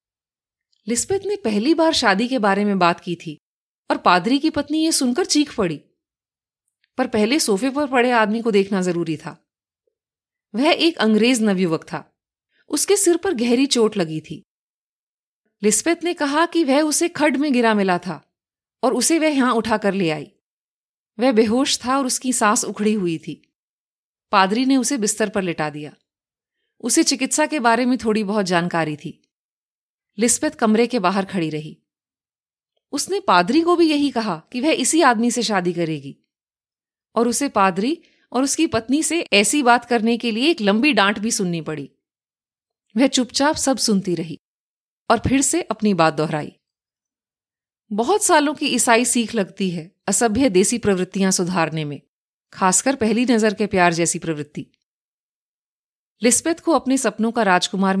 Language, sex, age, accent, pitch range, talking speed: Hindi, female, 30-49, native, 185-280 Hz, 160 wpm